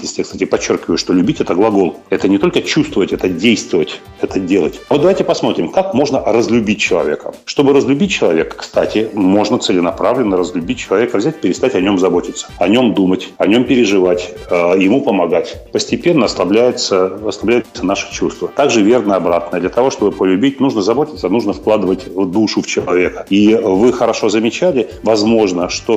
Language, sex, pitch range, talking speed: Russian, male, 95-120 Hz, 155 wpm